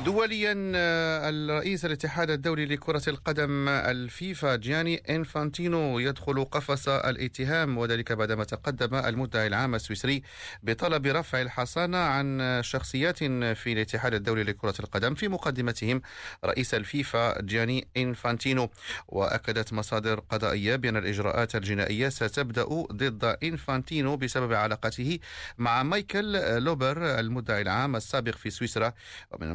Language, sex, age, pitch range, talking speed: Arabic, male, 40-59, 110-145 Hz, 110 wpm